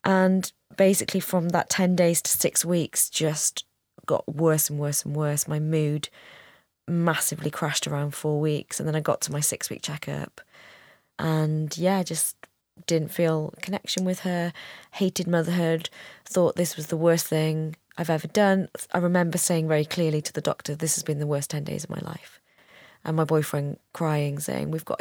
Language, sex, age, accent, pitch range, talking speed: English, female, 20-39, British, 145-165 Hz, 180 wpm